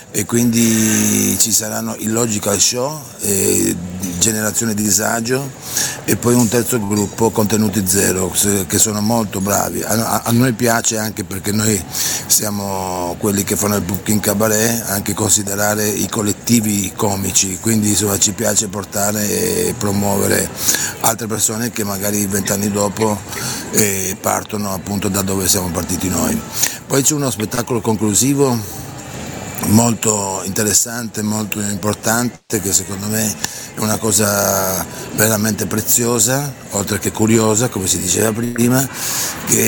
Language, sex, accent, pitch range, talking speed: Italian, male, native, 100-115 Hz, 125 wpm